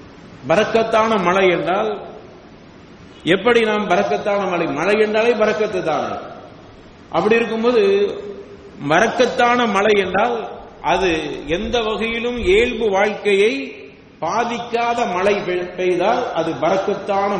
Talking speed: 85 wpm